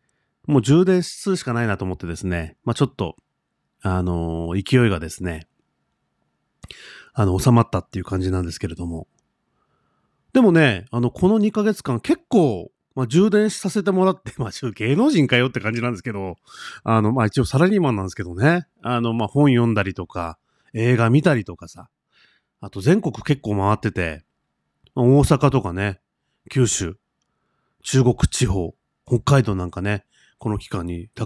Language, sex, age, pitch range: Japanese, male, 30-49, 95-130 Hz